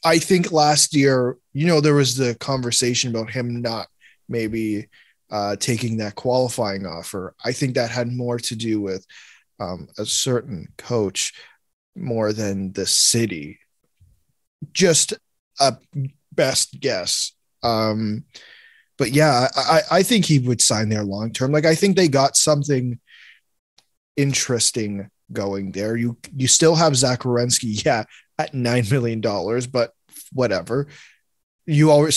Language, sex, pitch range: English, male, 120-150 Hz